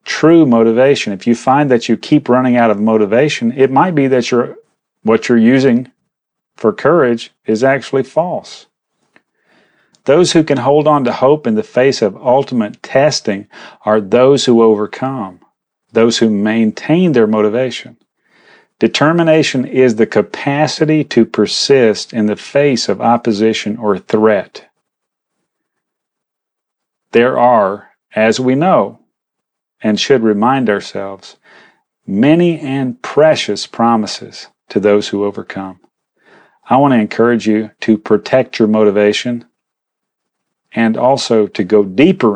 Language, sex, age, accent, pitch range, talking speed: English, male, 40-59, American, 105-130 Hz, 125 wpm